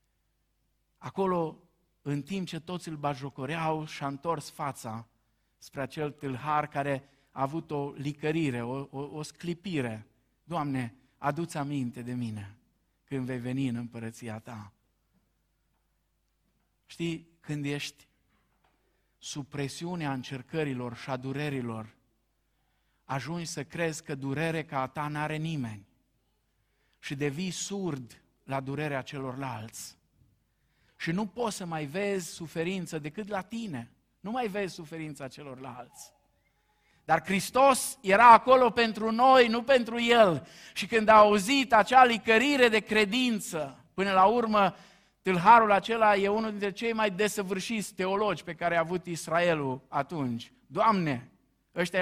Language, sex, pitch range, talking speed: Romanian, male, 135-190 Hz, 125 wpm